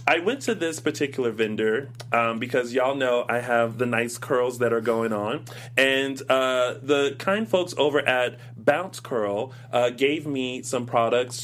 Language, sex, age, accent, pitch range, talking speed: English, male, 30-49, American, 115-135 Hz, 175 wpm